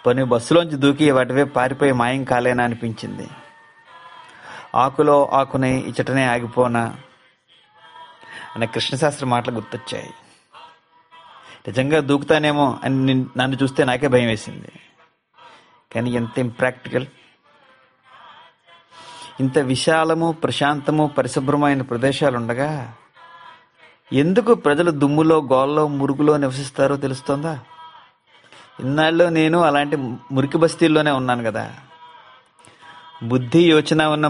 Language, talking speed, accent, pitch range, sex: Telugu, 85 wpm, native, 125-155 Hz, male